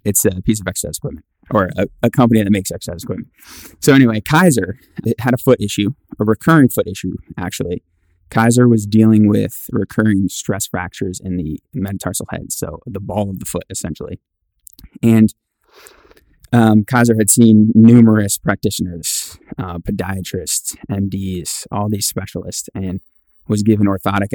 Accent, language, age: American, English, 20-39